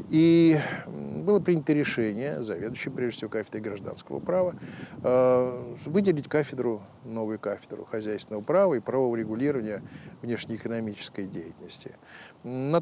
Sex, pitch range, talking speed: male, 110-145 Hz, 105 wpm